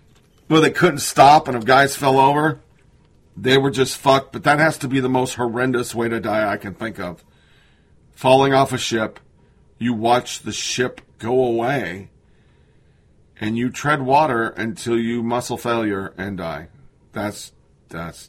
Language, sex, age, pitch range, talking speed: English, male, 40-59, 115-135 Hz, 160 wpm